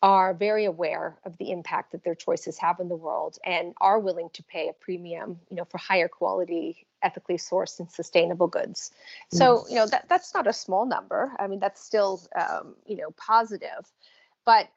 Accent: American